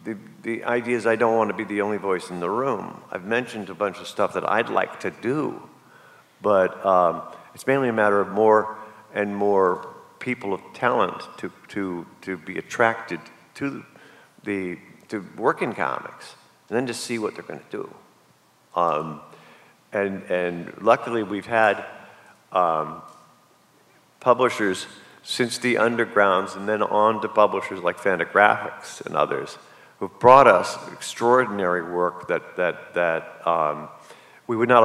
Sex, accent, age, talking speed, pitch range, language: male, American, 50-69, 155 wpm, 95-115 Hz, English